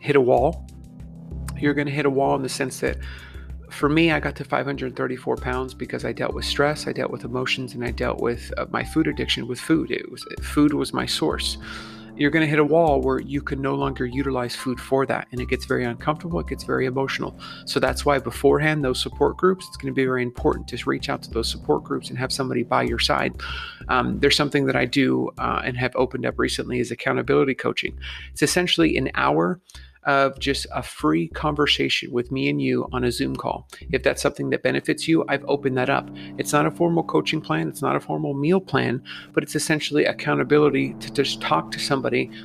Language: English